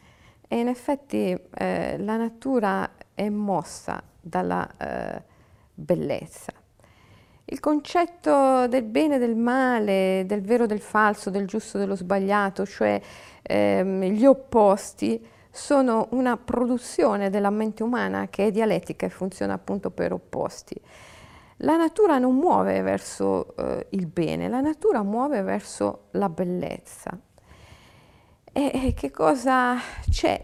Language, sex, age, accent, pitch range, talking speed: Italian, female, 40-59, native, 190-265 Hz, 125 wpm